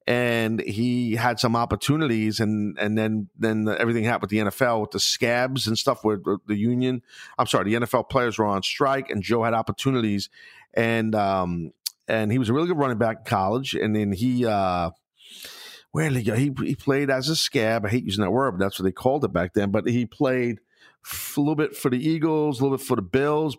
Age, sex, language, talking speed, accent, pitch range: 40-59, male, English, 230 wpm, American, 110-140 Hz